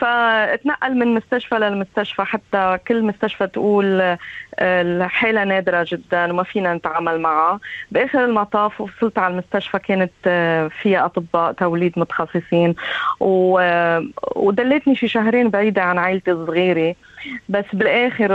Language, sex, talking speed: Arabic, female, 110 wpm